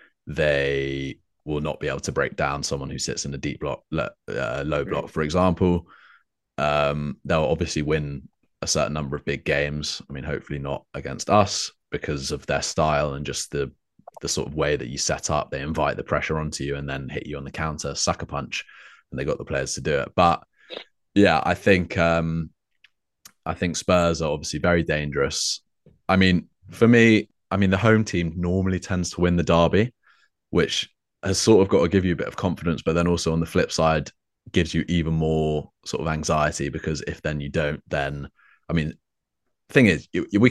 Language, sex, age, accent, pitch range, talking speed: English, male, 20-39, British, 75-90 Hz, 205 wpm